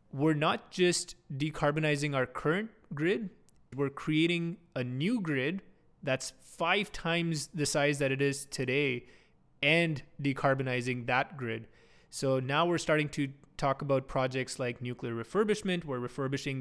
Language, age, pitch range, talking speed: English, 20-39, 130-160 Hz, 135 wpm